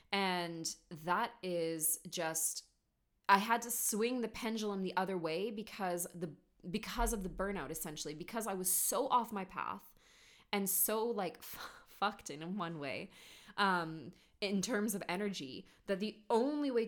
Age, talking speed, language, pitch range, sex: 20-39, 155 wpm, English, 165-205 Hz, female